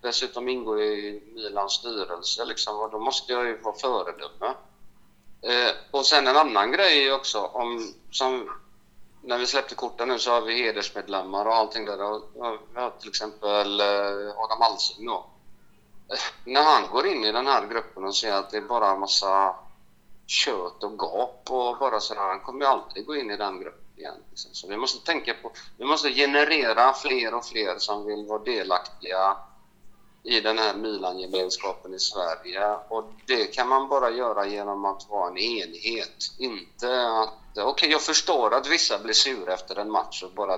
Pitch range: 100-125 Hz